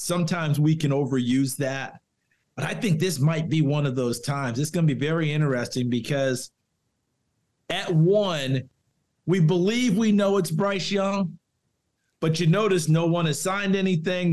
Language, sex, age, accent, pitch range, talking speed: English, male, 50-69, American, 150-190 Hz, 165 wpm